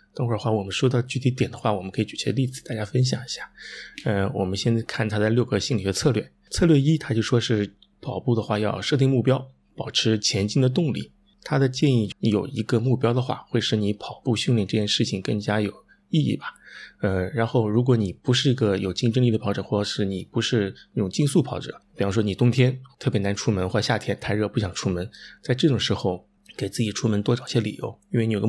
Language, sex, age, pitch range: Chinese, male, 20-39, 105-130 Hz